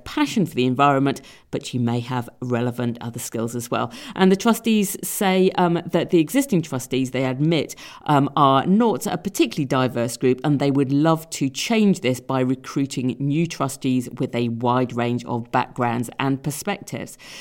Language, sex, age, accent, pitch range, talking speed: English, female, 50-69, British, 130-200 Hz, 170 wpm